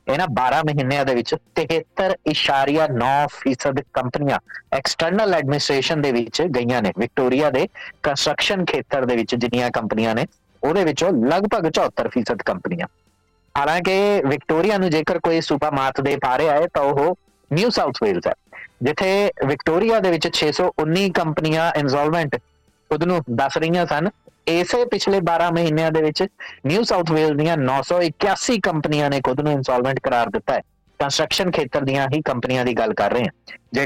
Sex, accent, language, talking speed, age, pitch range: male, Indian, English, 120 wpm, 20-39, 130-165 Hz